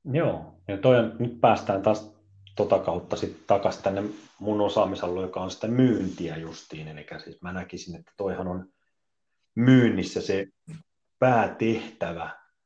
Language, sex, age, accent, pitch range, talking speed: Finnish, male, 30-49, native, 85-110 Hz, 135 wpm